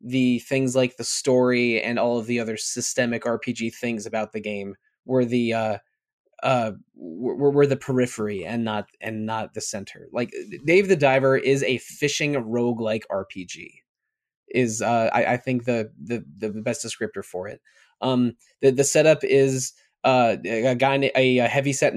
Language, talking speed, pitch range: English, 170 wpm, 120-135 Hz